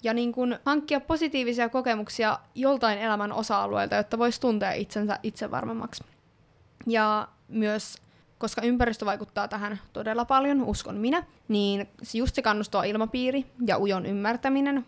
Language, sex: Finnish, female